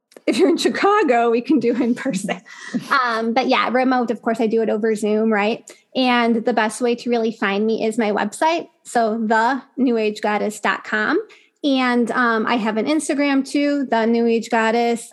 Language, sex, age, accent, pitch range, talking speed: English, female, 20-39, American, 225-255 Hz, 185 wpm